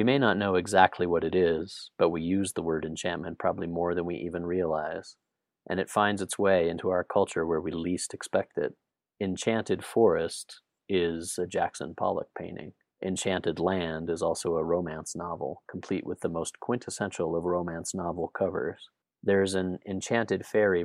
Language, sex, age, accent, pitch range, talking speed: English, male, 30-49, American, 85-95 Hz, 175 wpm